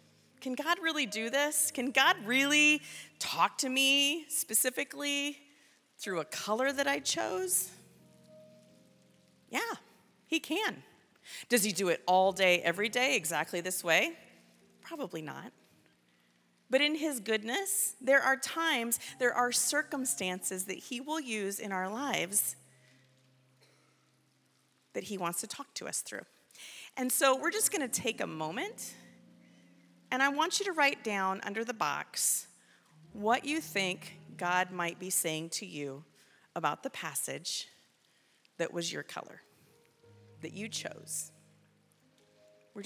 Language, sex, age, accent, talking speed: English, female, 40-59, American, 135 wpm